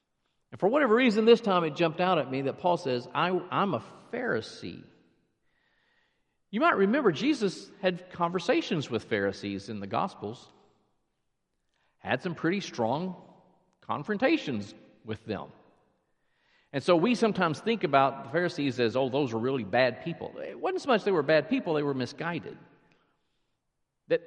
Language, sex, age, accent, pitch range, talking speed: English, male, 50-69, American, 145-205 Hz, 155 wpm